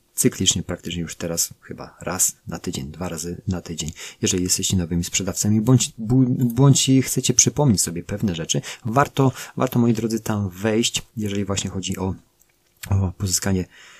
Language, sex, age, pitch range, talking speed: Polish, male, 30-49, 90-115 Hz, 150 wpm